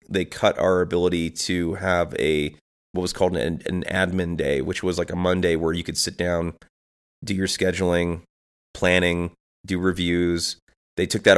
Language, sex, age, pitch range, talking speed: English, male, 30-49, 85-95 Hz, 175 wpm